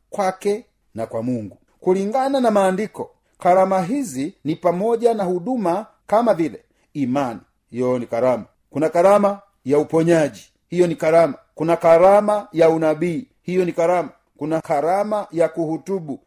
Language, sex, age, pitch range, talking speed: Swahili, male, 40-59, 170-210 Hz, 135 wpm